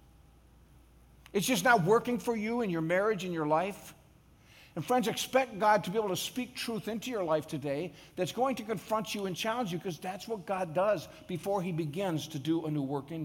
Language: English